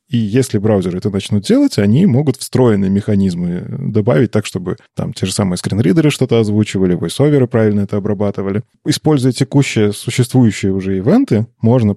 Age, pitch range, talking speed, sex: 20-39, 100-125 Hz, 150 wpm, male